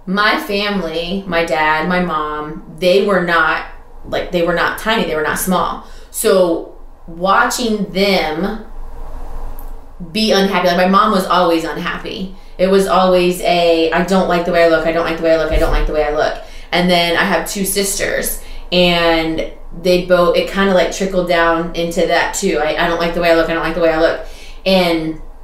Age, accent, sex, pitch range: 20-39, American, female, 165-185 Hz